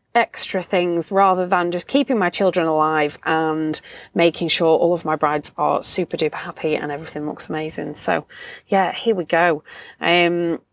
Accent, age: British, 30-49